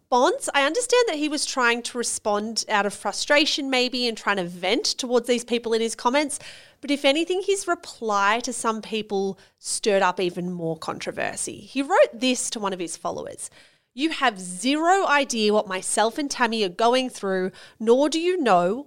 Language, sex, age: English, female, 30-49